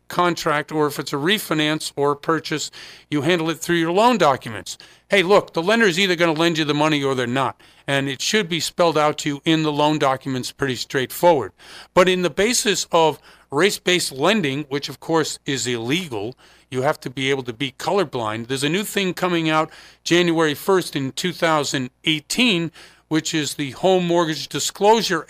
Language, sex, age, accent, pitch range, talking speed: English, male, 50-69, American, 145-185 Hz, 190 wpm